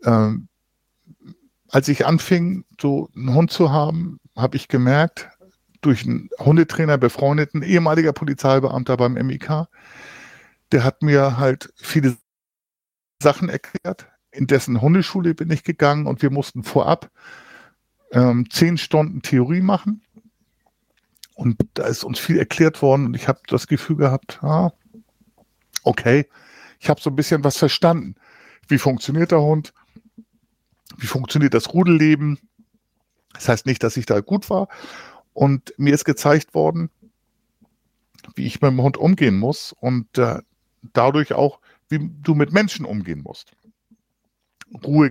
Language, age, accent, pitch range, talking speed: German, 50-69, German, 130-170 Hz, 135 wpm